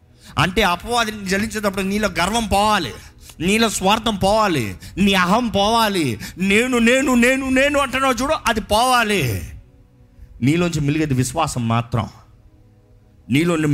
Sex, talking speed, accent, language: male, 110 wpm, native, Telugu